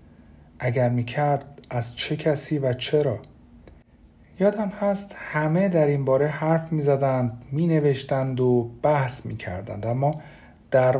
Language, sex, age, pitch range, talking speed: Persian, male, 50-69, 115-150 Hz, 110 wpm